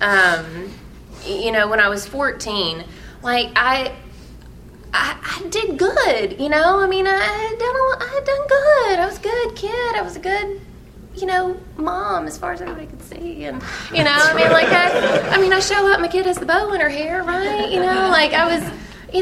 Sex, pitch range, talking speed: female, 225-365 Hz, 220 wpm